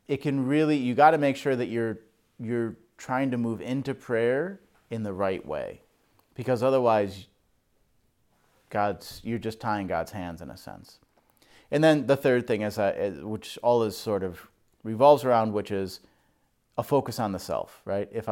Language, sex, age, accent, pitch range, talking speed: English, male, 30-49, American, 105-130 Hz, 165 wpm